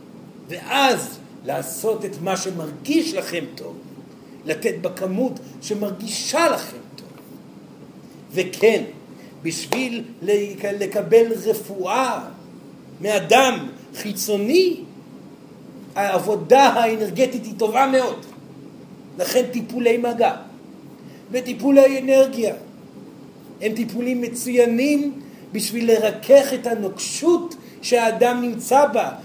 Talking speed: 80 wpm